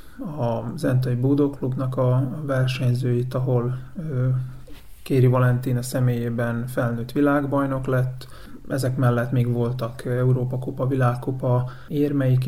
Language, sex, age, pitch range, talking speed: Hungarian, male, 30-49, 125-135 Hz, 95 wpm